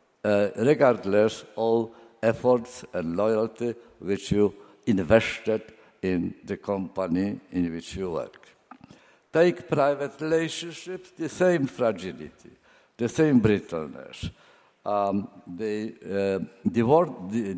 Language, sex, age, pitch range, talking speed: Italian, male, 60-79, 95-125 Hz, 95 wpm